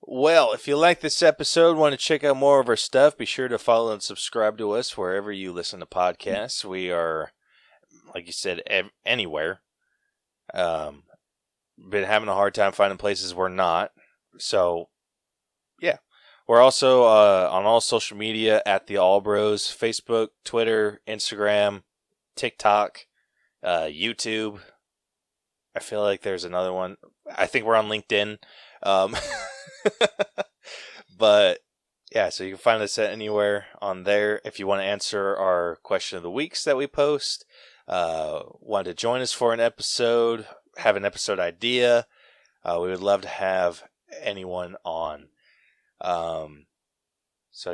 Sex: male